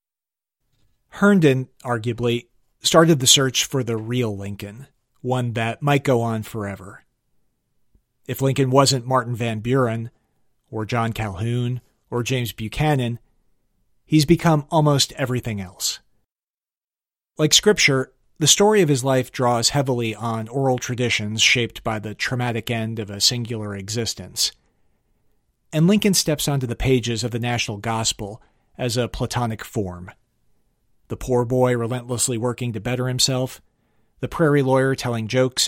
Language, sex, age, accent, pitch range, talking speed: English, male, 40-59, American, 115-135 Hz, 135 wpm